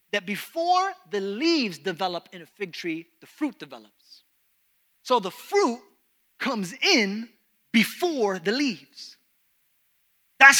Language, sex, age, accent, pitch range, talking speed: English, male, 30-49, American, 210-305 Hz, 120 wpm